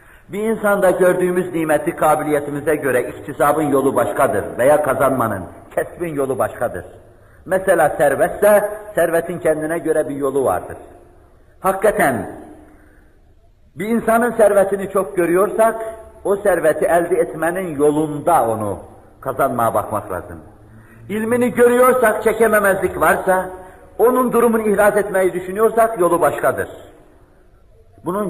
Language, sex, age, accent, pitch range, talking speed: Turkish, male, 50-69, native, 125-180 Hz, 105 wpm